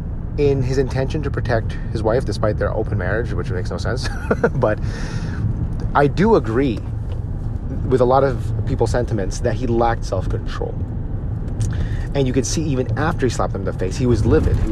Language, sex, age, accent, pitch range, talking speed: English, male, 30-49, American, 100-125 Hz, 185 wpm